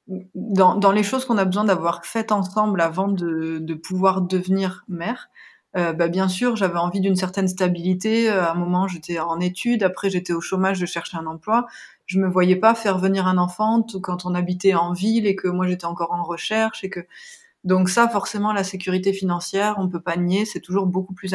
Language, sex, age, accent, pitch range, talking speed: French, female, 30-49, French, 180-215 Hz, 215 wpm